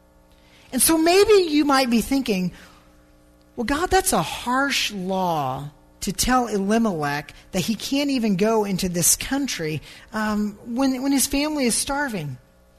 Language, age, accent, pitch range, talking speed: English, 40-59, American, 175-275 Hz, 145 wpm